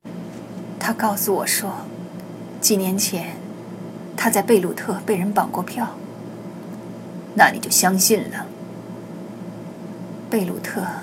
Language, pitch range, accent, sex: Chinese, 180-215 Hz, native, female